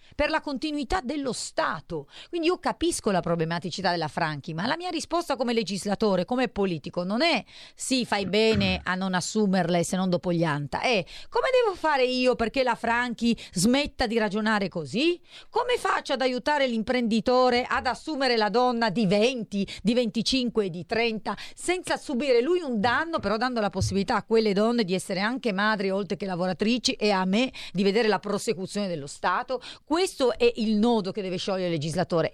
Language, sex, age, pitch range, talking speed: Italian, female, 40-59, 180-250 Hz, 180 wpm